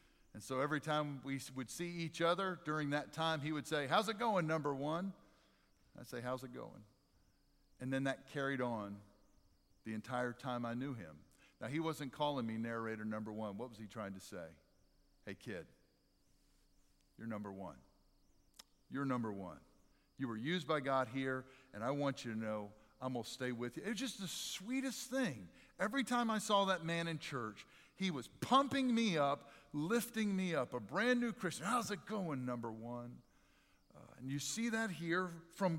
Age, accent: 50-69, American